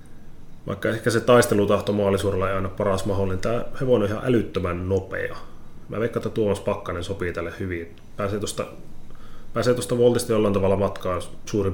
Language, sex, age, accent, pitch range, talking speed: Finnish, male, 30-49, native, 95-105 Hz, 160 wpm